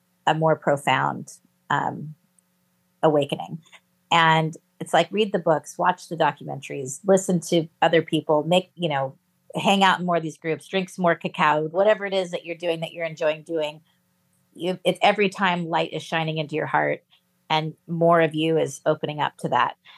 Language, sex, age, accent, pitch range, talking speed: English, female, 30-49, American, 155-180 Hz, 185 wpm